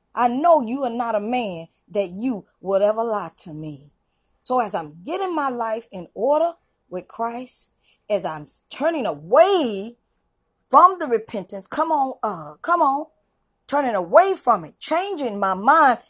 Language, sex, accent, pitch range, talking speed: English, female, American, 190-270 Hz, 160 wpm